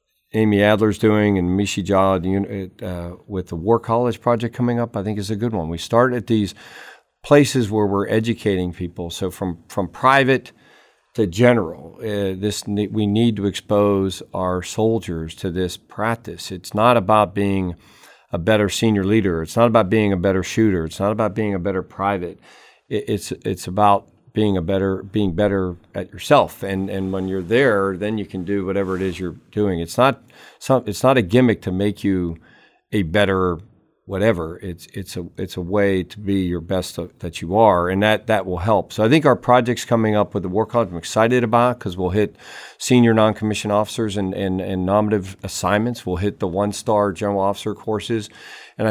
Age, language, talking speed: 50-69, English, 195 wpm